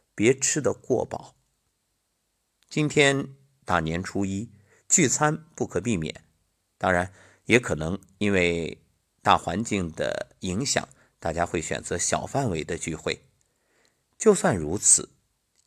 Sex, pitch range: male, 90-135 Hz